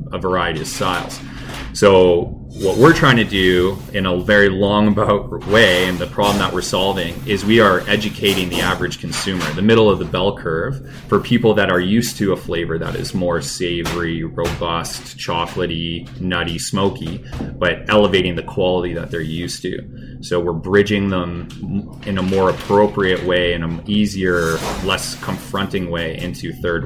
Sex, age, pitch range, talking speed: male, 20-39, 85-100 Hz, 170 wpm